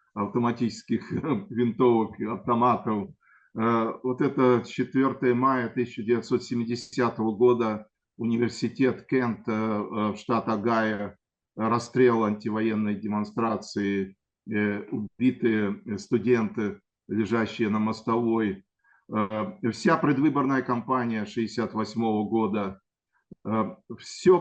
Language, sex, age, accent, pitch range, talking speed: Russian, male, 50-69, native, 105-125 Hz, 70 wpm